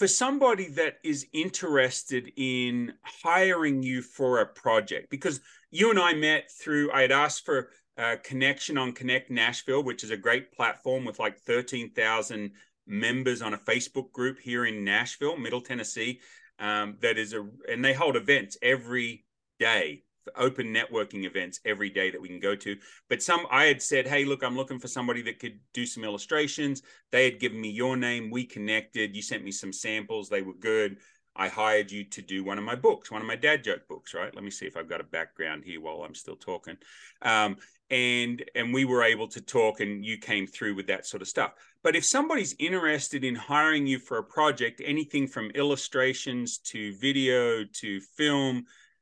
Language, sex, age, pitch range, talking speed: English, male, 30-49, 110-140 Hz, 195 wpm